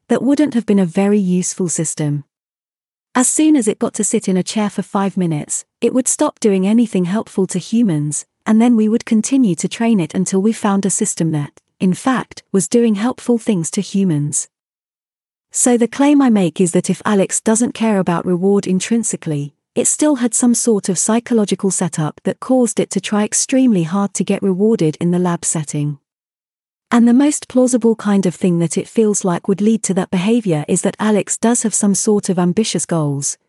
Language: English